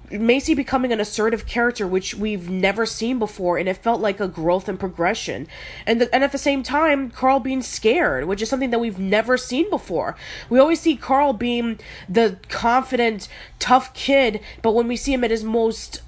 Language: English